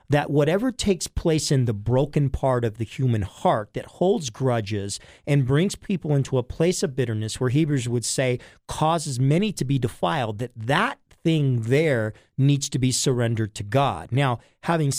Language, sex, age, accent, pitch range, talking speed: English, male, 40-59, American, 125-160 Hz, 175 wpm